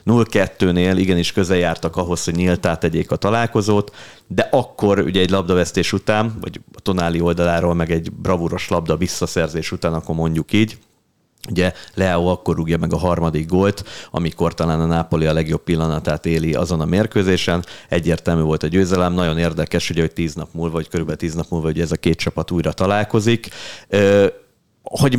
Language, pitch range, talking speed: Hungarian, 80-95 Hz, 170 wpm